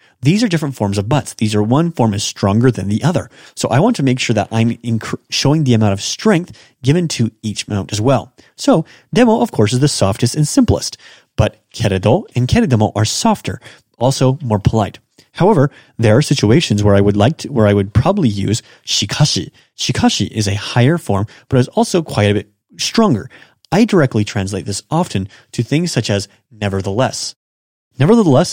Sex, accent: male, American